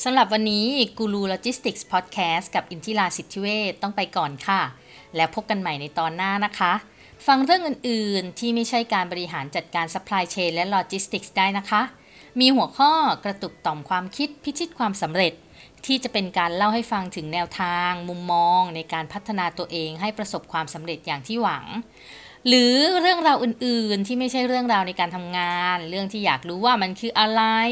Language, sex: Thai, female